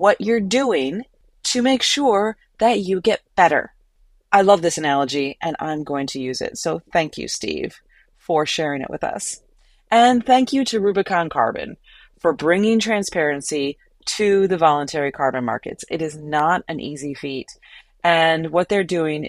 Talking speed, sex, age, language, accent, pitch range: 165 wpm, female, 30-49, English, American, 155-200 Hz